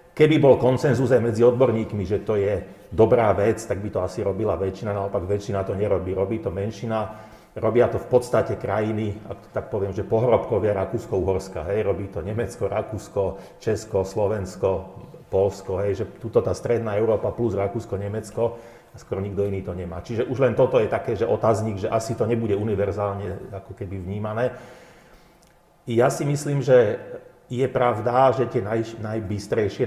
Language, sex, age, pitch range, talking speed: Slovak, male, 40-59, 100-120 Hz, 165 wpm